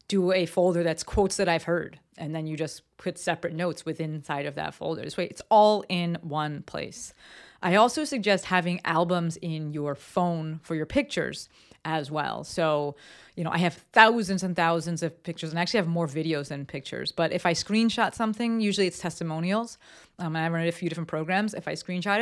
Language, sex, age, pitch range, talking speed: English, female, 30-49, 160-190 Hz, 205 wpm